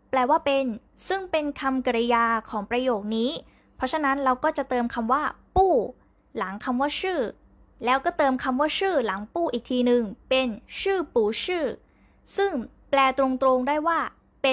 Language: Thai